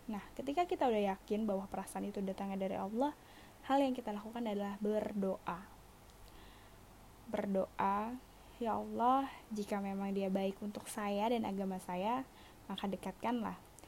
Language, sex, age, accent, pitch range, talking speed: Indonesian, female, 10-29, native, 190-245 Hz, 135 wpm